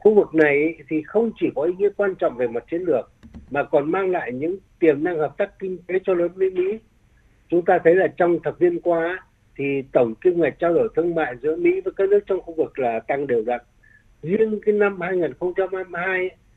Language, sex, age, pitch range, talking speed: Vietnamese, male, 60-79, 140-190 Hz, 225 wpm